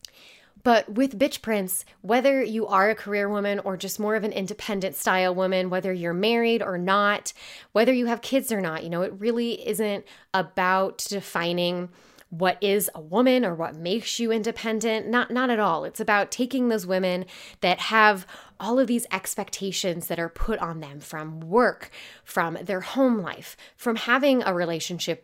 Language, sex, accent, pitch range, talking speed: English, female, American, 175-220 Hz, 180 wpm